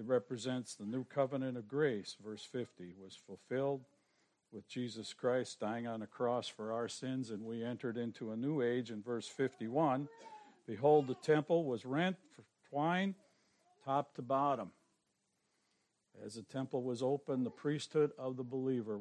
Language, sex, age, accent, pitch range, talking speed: English, male, 60-79, American, 115-140 Hz, 160 wpm